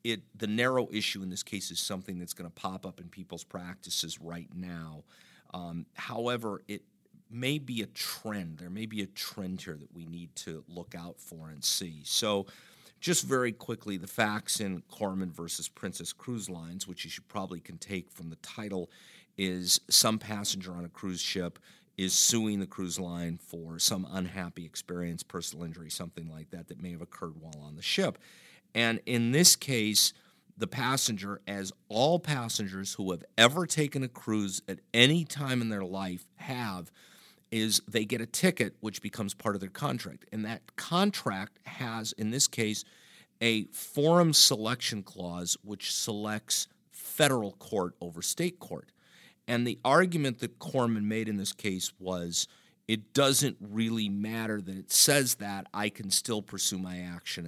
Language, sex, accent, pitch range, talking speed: English, male, American, 90-115 Hz, 175 wpm